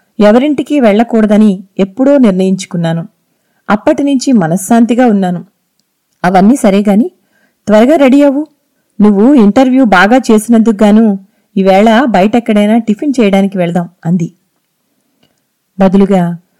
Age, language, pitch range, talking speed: 30-49, Telugu, 190-235 Hz, 85 wpm